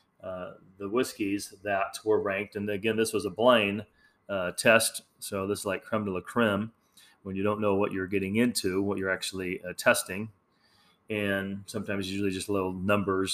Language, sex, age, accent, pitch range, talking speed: English, male, 30-49, American, 95-110 Hz, 190 wpm